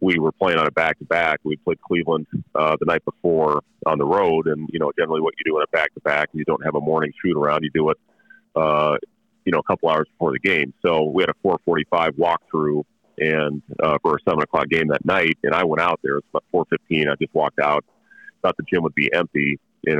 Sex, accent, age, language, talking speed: male, American, 30-49, English, 255 wpm